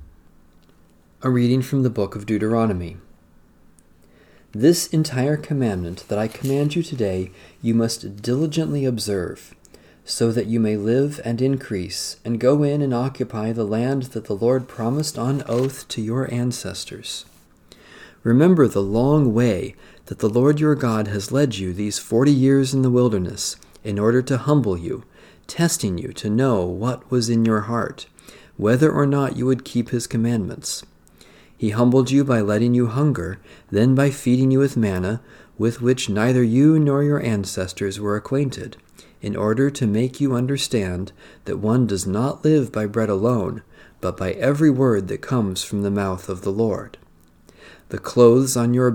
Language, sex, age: English, male, 40-59